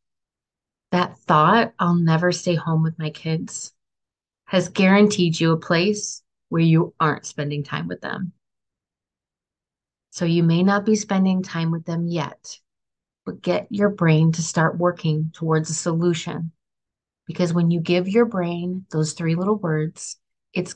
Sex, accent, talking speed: female, American, 150 wpm